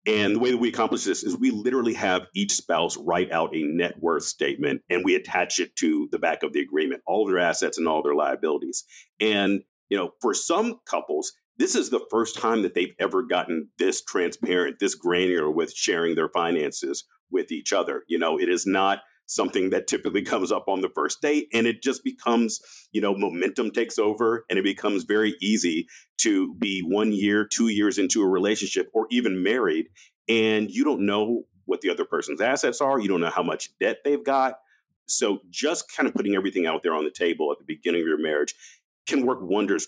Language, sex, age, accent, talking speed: English, male, 50-69, American, 210 wpm